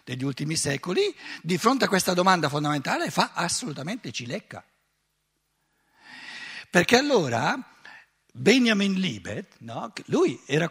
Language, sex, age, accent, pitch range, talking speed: Italian, male, 60-79, native, 145-210 Hz, 100 wpm